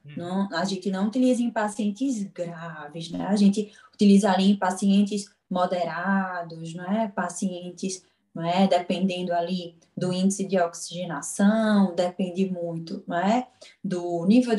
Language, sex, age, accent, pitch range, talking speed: Portuguese, female, 20-39, Brazilian, 185-225 Hz, 135 wpm